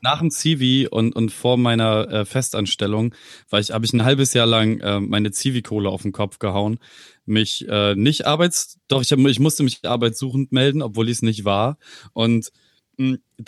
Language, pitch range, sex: German, 110-130 Hz, male